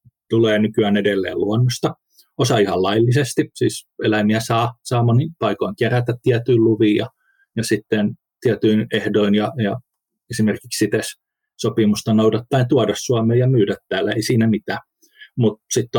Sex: male